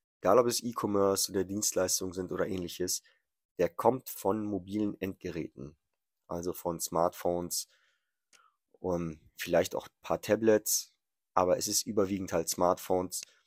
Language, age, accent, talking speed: German, 30-49, German, 130 wpm